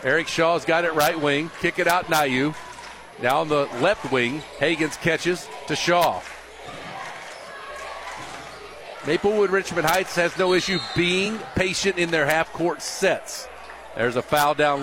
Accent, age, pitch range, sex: American, 50-69, 150-180 Hz, male